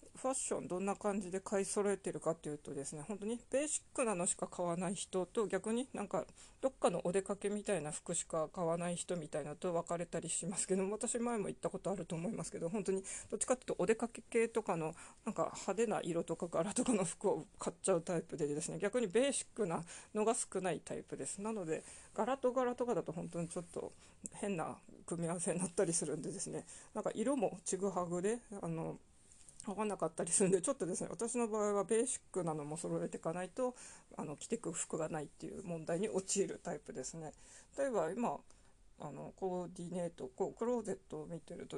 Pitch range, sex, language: 170-225 Hz, female, Japanese